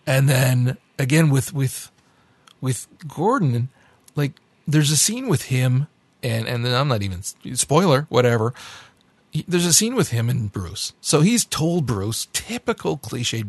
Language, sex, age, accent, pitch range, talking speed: English, male, 40-59, American, 115-140 Hz, 155 wpm